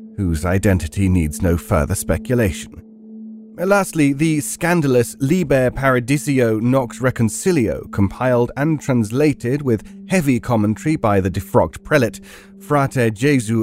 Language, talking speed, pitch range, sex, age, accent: English, 110 wpm, 105-145 Hz, male, 30-49, British